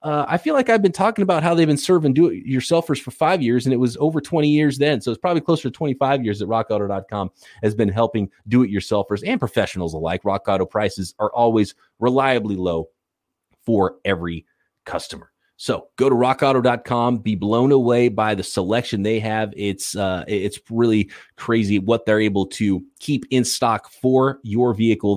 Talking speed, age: 180 wpm, 30-49